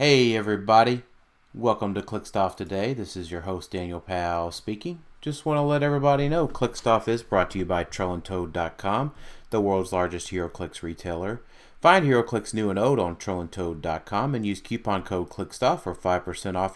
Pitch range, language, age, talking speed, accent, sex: 85-110 Hz, English, 30-49, 170 wpm, American, male